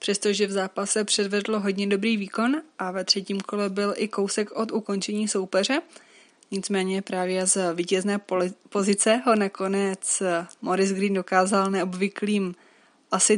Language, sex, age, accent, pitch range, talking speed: Czech, female, 20-39, native, 185-205 Hz, 130 wpm